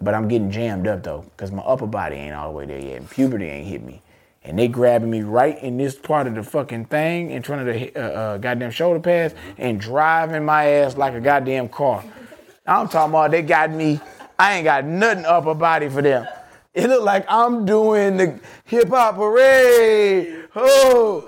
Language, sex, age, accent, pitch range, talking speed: English, male, 20-39, American, 125-180 Hz, 200 wpm